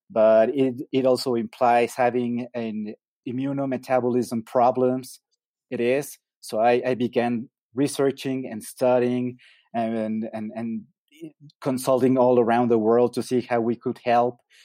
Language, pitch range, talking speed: English, 115-130 Hz, 135 wpm